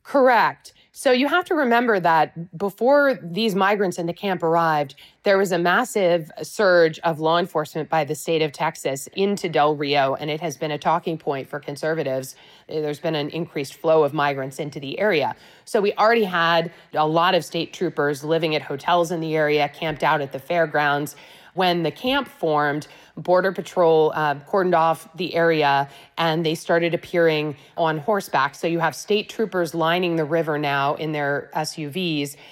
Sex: female